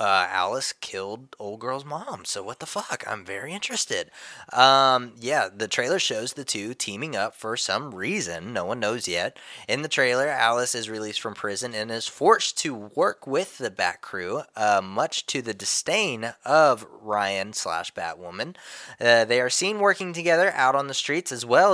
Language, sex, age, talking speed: English, male, 20-39, 180 wpm